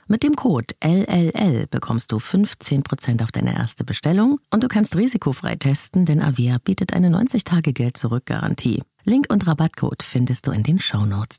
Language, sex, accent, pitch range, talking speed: German, female, German, 125-195 Hz, 155 wpm